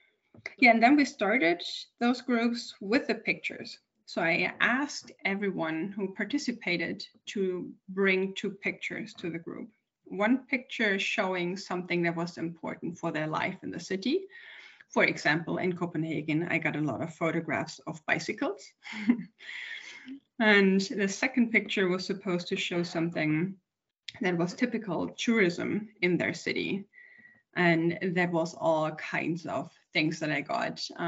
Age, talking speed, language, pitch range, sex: 20-39, 145 wpm, English, 165-220 Hz, female